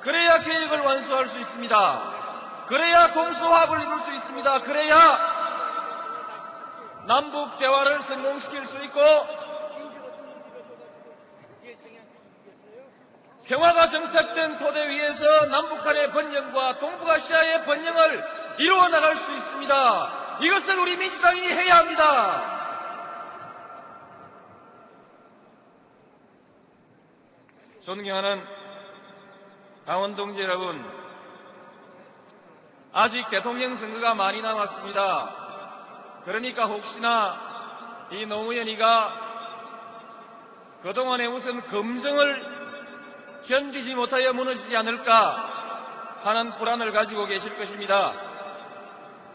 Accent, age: native, 40-59